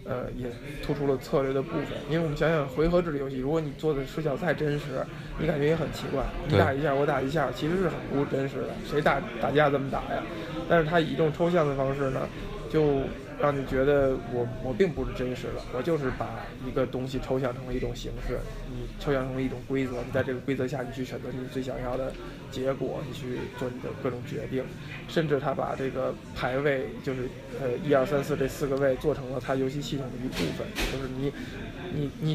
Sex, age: male, 20-39